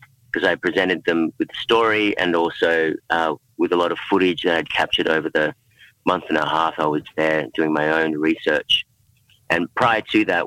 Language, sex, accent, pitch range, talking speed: English, male, Australian, 80-105 Hz, 200 wpm